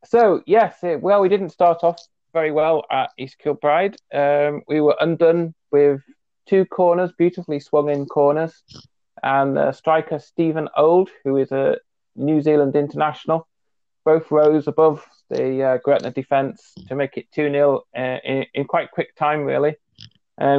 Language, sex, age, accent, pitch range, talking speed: English, male, 30-49, British, 135-160 Hz, 155 wpm